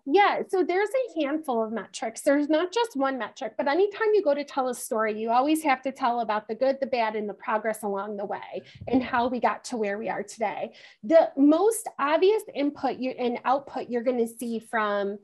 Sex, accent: female, American